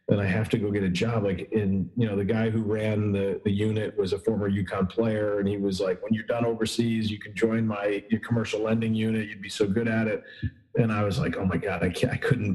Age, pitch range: 40-59, 95-110 Hz